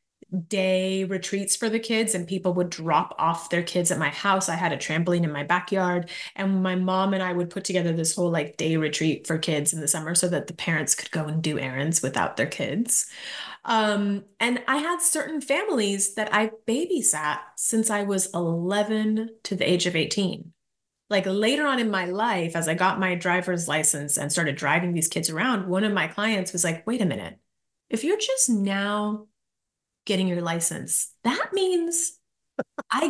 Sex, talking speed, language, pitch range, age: female, 195 wpm, English, 175-245 Hz, 30-49